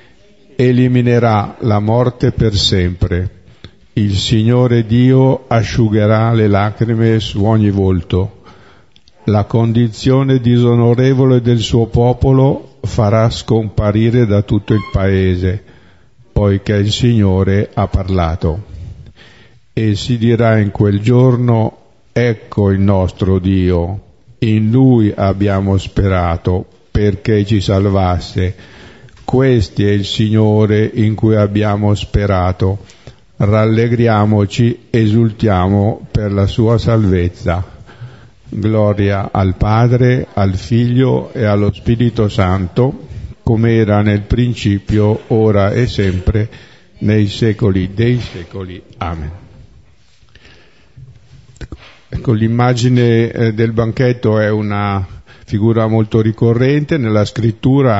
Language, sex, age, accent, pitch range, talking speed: Italian, male, 50-69, native, 100-120 Hz, 95 wpm